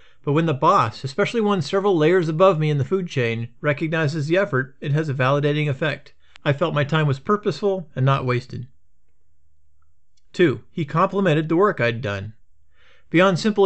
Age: 40-59